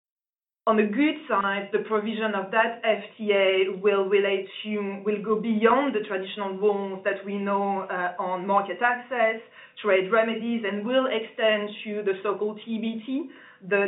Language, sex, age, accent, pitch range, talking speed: English, female, 20-39, French, 190-225 Hz, 150 wpm